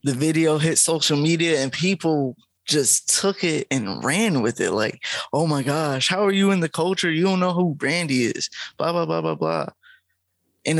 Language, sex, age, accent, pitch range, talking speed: English, male, 20-39, American, 130-160 Hz, 200 wpm